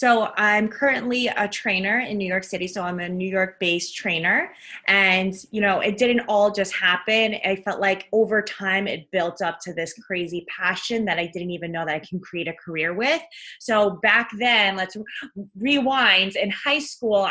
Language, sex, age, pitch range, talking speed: English, female, 20-39, 180-225 Hz, 195 wpm